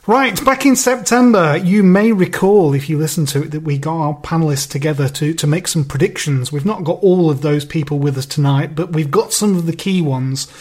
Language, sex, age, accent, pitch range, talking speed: English, male, 30-49, British, 145-185 Hz, 230 wpm